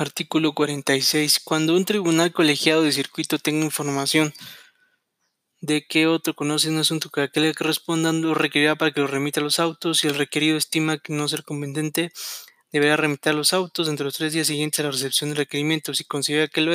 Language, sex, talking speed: Spanish, male, 200 wpm